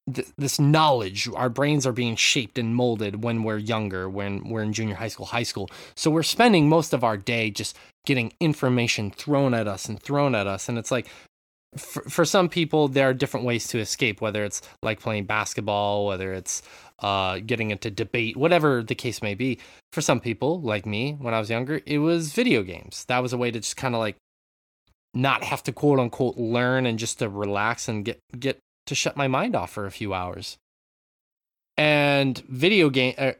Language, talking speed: English, 205 wpm